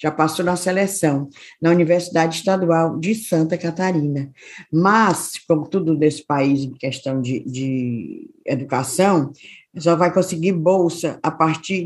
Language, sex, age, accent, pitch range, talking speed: Portuguese, female, 20-39, Brazilian, 150-190 Hz, 130 wpm